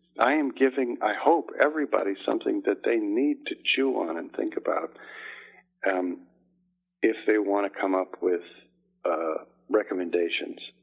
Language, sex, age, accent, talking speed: English, male, 50-69, American, 145 wpm